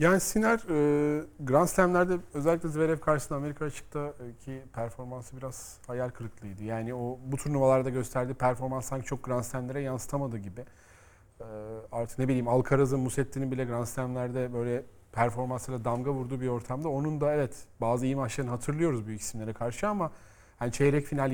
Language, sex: Turkish, male